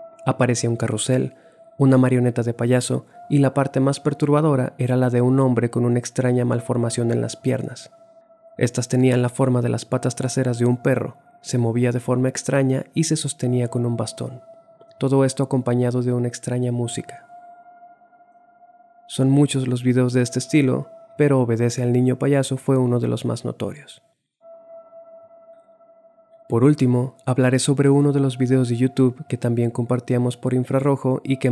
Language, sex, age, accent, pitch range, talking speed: Spanish, male, 20-39, Mexican, 125-155 Hz, 170 wpm